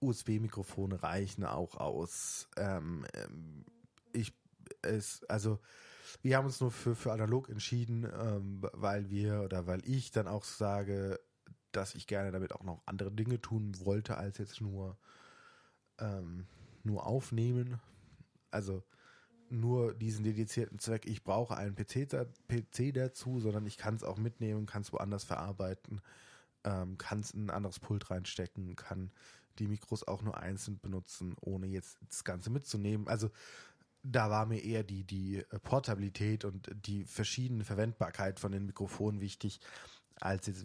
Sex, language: male, German